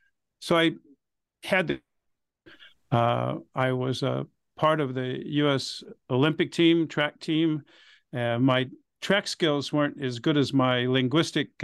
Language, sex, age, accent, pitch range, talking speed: English, male, 50-69, American, 135-170 Hz, 135 wpm